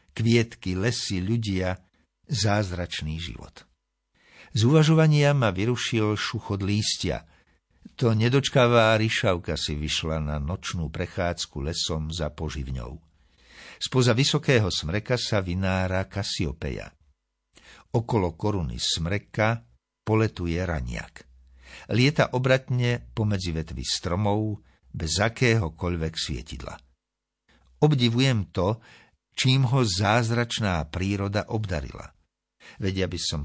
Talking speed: 90 wpm